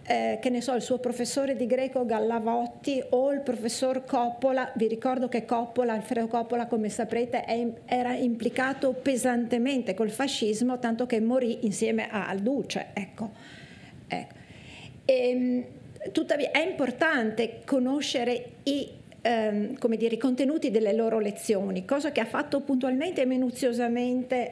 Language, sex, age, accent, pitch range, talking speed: Italian, female, 50-69, native, 220-260 Hz, 140 wpm